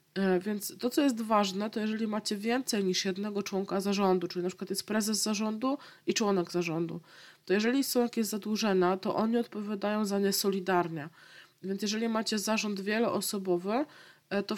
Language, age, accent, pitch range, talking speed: Polish, 20-39, native, 180-215 Hz, 160 wpm